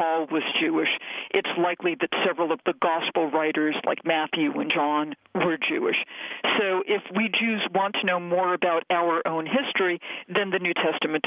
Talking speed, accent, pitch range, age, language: 175 wpm, American, 165-210 Hz, 50-69, English